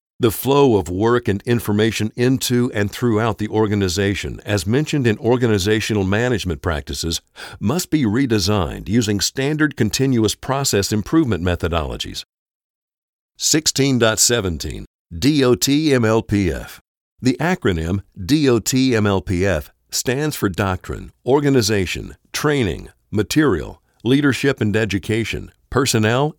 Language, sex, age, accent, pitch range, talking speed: English, male, 60-79, American, 100-130 Hz, 95 wpm